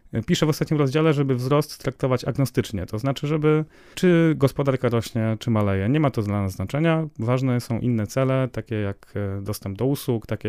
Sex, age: male, 30-49